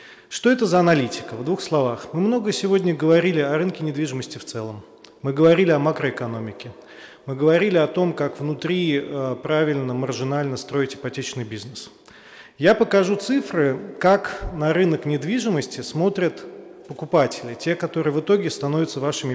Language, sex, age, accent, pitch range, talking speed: Russian, male, 30-49, native, 135-195 Hz, 145 wpm